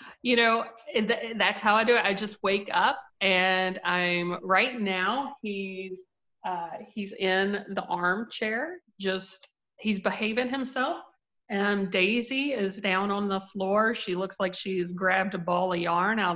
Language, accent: English, American